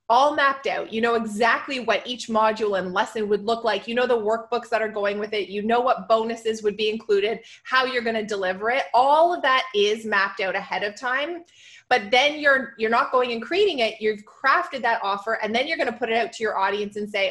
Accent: American